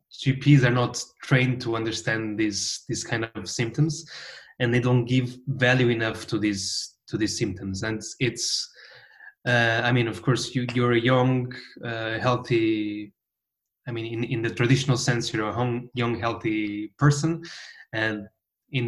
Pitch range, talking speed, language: 110-135 Hz, 160 wpm, English